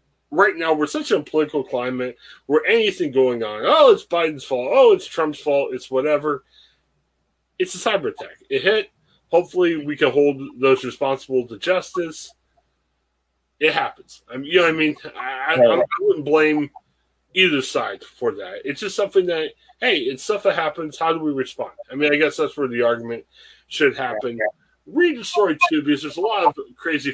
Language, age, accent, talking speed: English, 30-49, American, 180 wpm